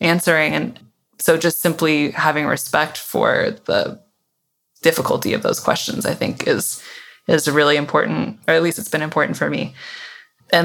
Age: 20-39